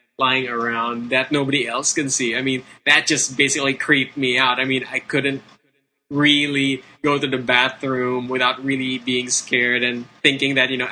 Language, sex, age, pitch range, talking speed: English, male, 10-29, 125-140 Hz, 185 wpm